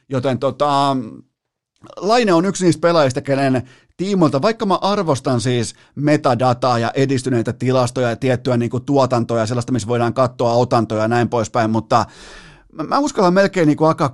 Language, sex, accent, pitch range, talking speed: Finnish, male, native, 115-140 Hz, 155 wpm